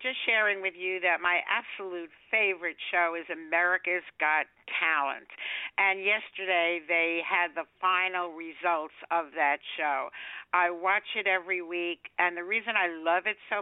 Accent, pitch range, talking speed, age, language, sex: American, 160-190 Hz, 155 wpm, 60-79, English, female